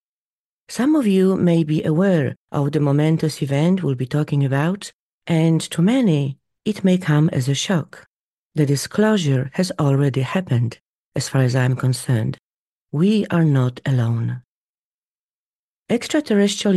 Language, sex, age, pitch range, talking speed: English, female, 40-59, 135-175 Hz, 135 wpm